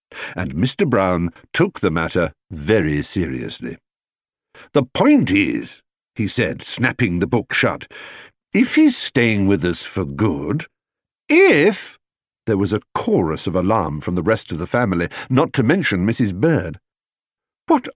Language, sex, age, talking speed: English, male, 60-79, 145 wpm